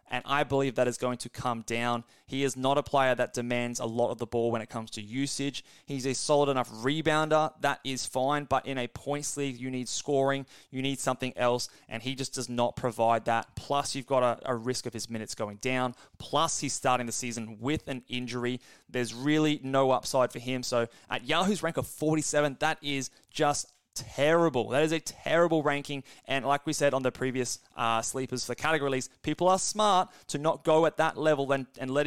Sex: male